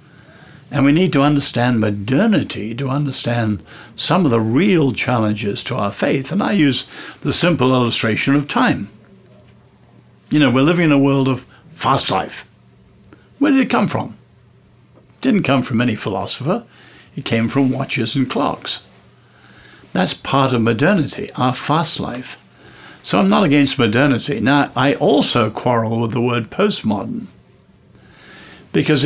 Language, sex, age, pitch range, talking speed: English, male, 60-79, 120-150 Hz, 145 wpm